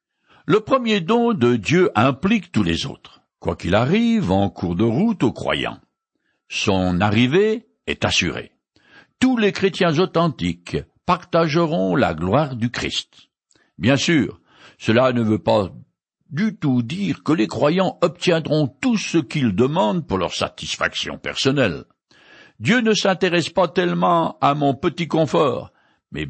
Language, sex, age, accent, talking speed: French, male, 60-79, French, 140 wpm